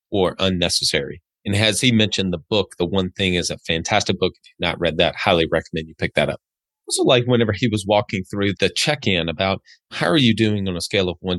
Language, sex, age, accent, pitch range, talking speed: English, male, 30-49, American, 90-105 Hz, 235 wpm